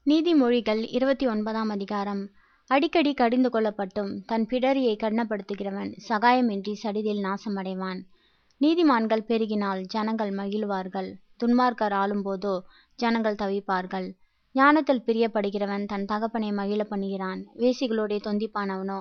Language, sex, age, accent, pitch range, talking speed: Tamil, female, 20-39, native, 200-230 Hz, 90 wpm